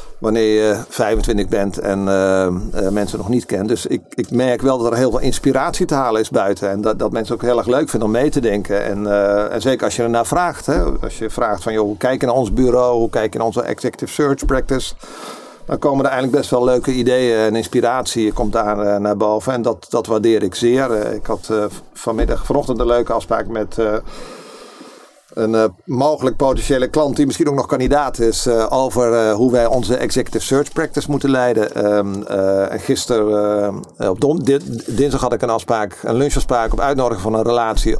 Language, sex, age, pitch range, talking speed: Dutch, male, 50-69, 105-130 Hz, 215 wpm